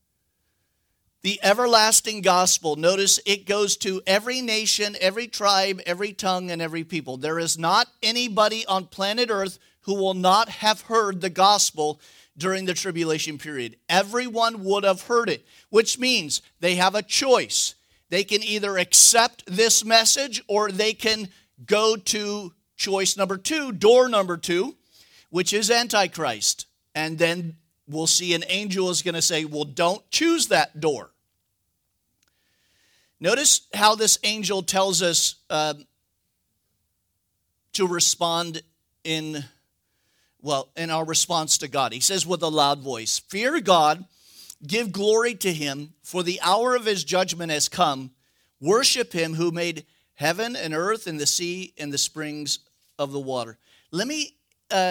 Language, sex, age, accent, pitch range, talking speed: English, male, 50-69, American, 155-205 Hz, 150 wpm